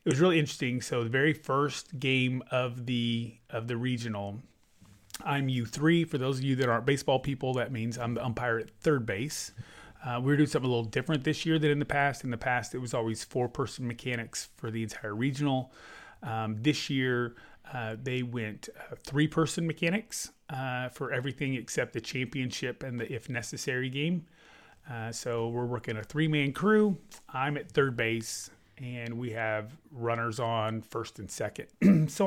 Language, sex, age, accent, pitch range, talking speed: English, male, 30-49, American, 115-140 Hz, 180 wpm